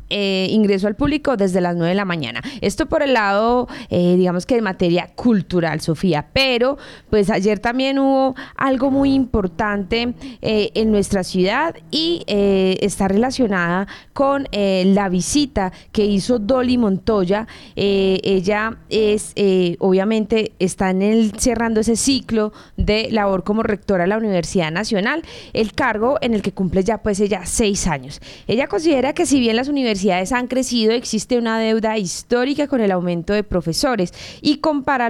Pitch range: 185-240 Hz